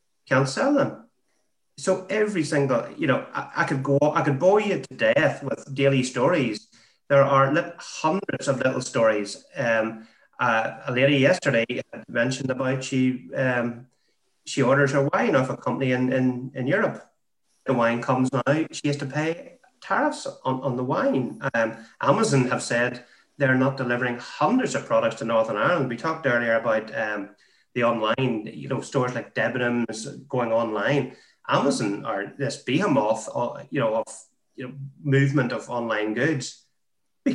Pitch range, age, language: 120-155 Hz, 30-49, English